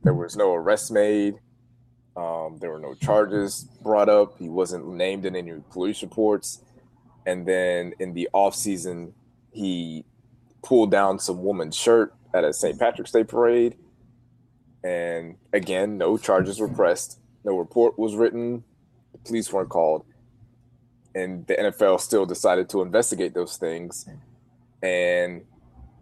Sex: male